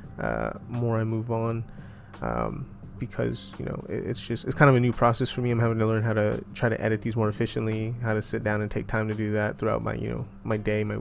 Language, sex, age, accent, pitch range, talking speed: English, male, 20-39, American, 105-120 Hz, 265 wpm